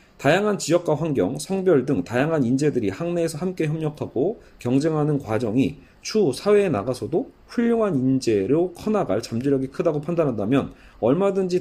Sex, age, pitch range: male, 40-59, 130-180 Hz